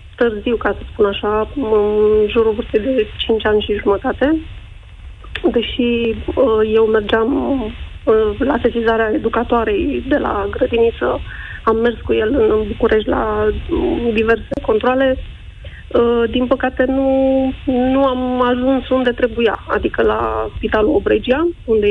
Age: 30-49